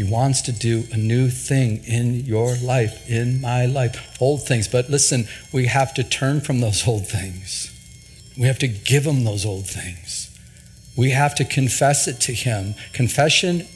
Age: 50-69